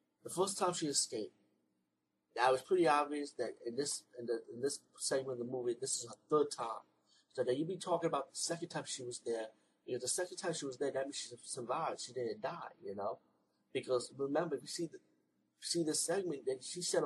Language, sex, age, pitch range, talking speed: English, male, 30-49, 115-170 Hz, 240 wpm